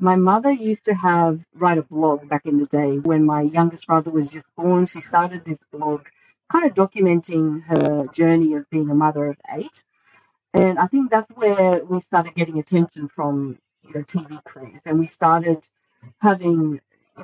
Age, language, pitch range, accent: 40-59, English, 150-180 Hz, Australian